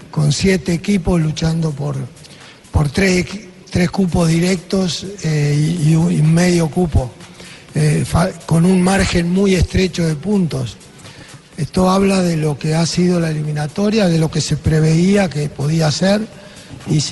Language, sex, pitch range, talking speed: Spanish, male, 155-185 Hz, 145 wpm